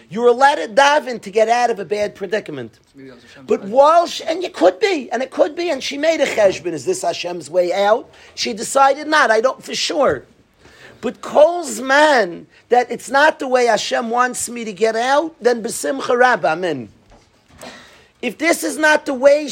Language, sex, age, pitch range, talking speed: English, male, 50-69, 200-275 Hz, 195 wpm